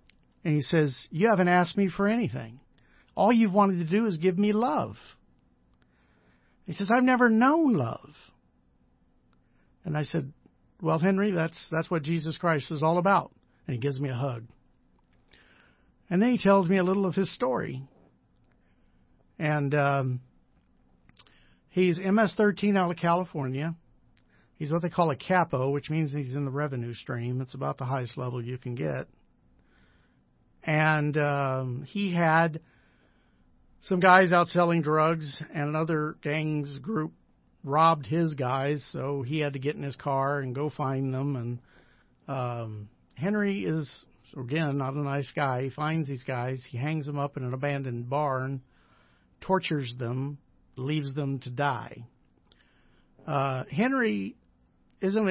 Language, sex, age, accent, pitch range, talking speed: English, male, 50-69, American, 125-165 Hz, 150 wpm